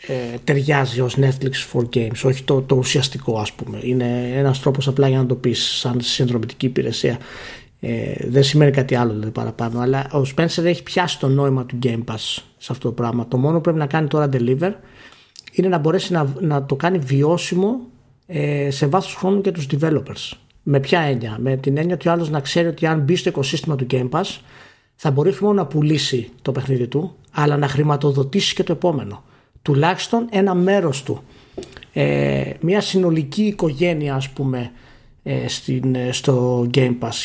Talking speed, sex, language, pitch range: 180 wpm, male, Greek, 130-170 Hz